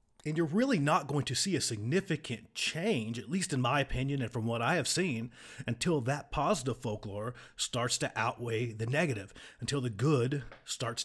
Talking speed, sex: 185 wpm, male